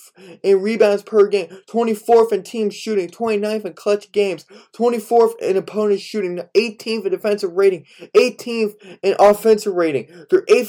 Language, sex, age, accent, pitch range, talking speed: English, male, 20-39, American, 200-250 Hz, 145 wpm